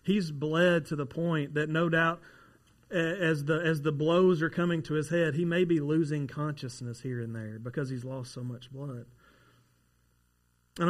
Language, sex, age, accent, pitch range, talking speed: English, male, 30-49, American, 130-170 Hz, 180 wpm